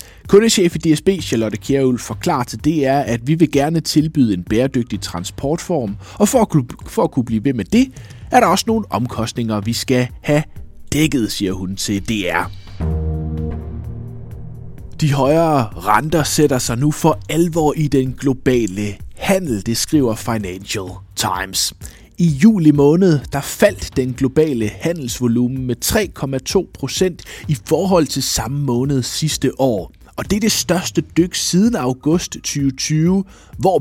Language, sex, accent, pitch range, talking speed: Danish, male, native, 105-155 Hz, 145 wpm